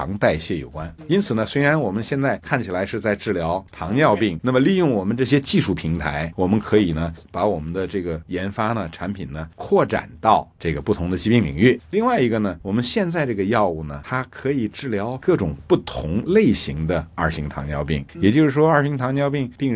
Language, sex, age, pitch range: Chinese, male, 50-69, 85-120 Hz